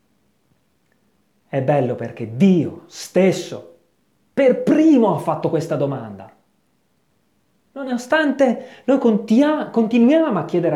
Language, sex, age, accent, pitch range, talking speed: Italian, male, 30-49, native, 170-255 Hz, 90 wpm